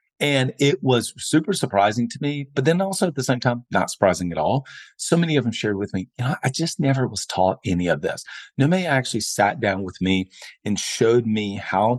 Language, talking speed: English, 225 wpm